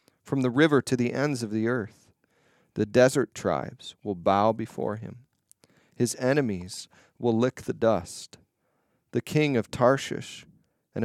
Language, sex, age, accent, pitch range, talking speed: English, male, 40-59, American, 110-135 Hz, 145 wpm